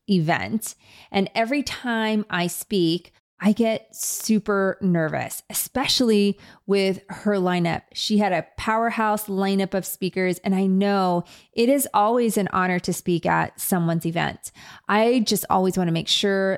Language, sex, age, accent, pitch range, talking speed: English, female, 30-49, American, 180-215 Hz, 150 wpm